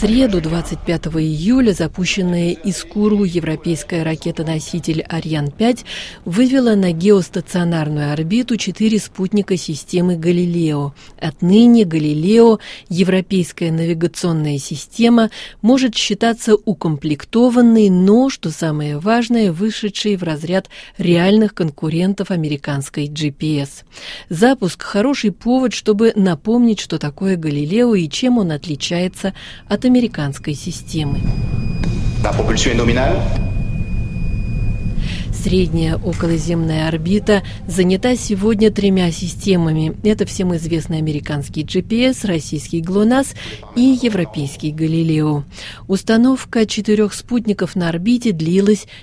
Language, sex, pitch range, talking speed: Russian, female, 160-210 Hz, 95 wpm